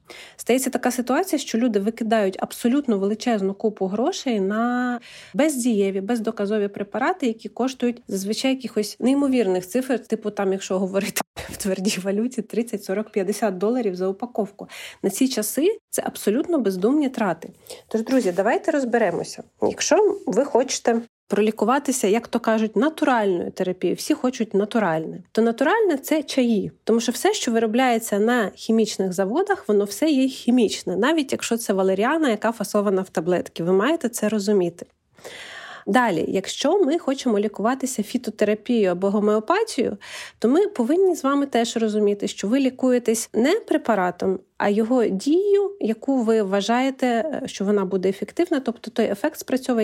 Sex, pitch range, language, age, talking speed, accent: female, 205-260 Hz, Ukrainian, 30-49, 140 wpm, native